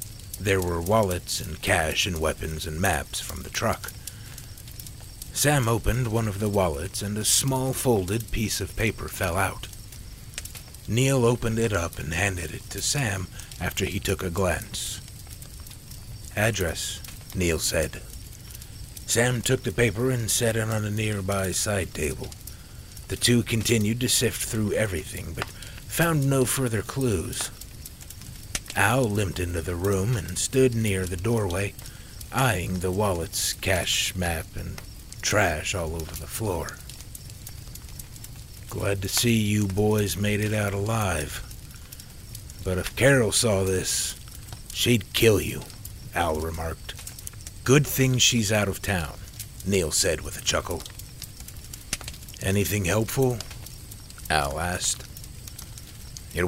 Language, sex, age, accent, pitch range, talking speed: English, male, 60-79, American, 95-115 Hz, 130 wpm